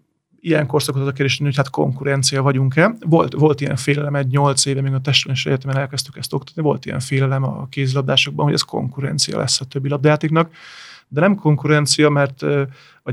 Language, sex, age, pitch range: Hungarian, male, 30-49, 135-155 Hz